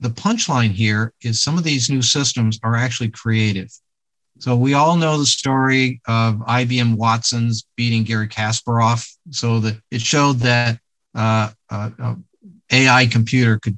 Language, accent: English, American